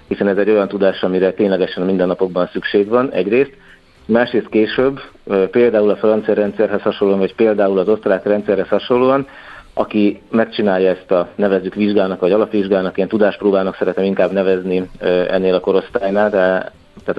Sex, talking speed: male, 145 wpm